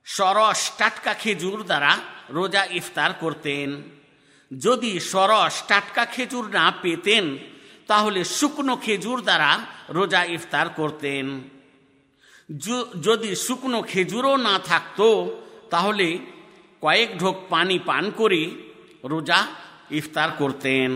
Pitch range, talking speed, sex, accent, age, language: 150-210 Hz, 80 wpm, male, native, 50-69, Bengali